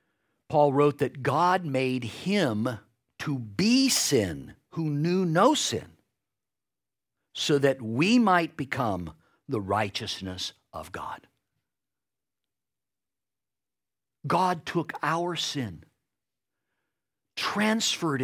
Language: English